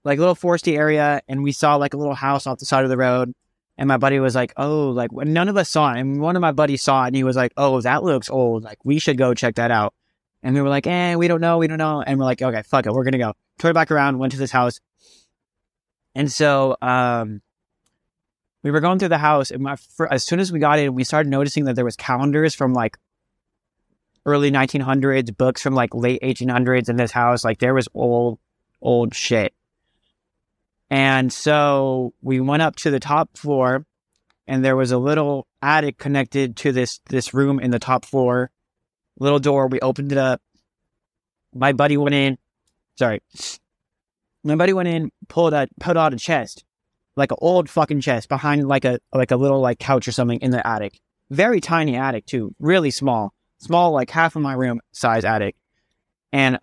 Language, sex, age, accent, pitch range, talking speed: English, male, 20-39, American, 125-150 Hz, 210 wpm